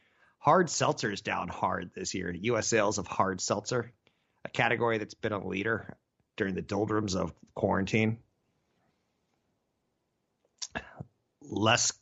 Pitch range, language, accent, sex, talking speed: 95-125 Hz, English, American, male, 120 wpm